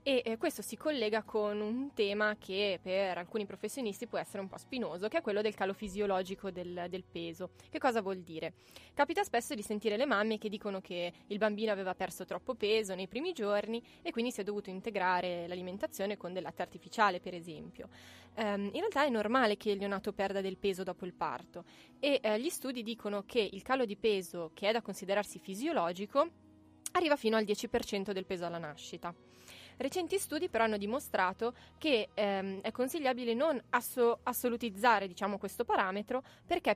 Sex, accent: female, native